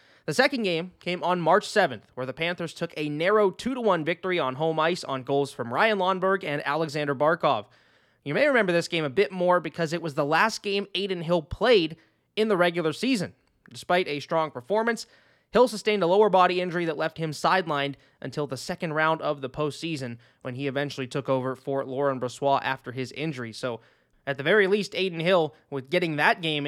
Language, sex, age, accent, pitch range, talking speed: English, male, 20-39, American, 135-180 Hz, 200 wpm